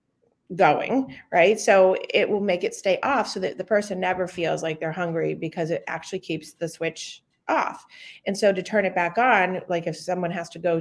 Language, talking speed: English, 210 wpm